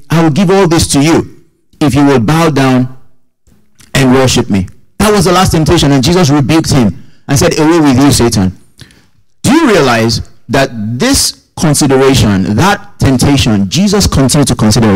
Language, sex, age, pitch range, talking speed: English, male, 50-69, 120-175 Hz, 170 wpm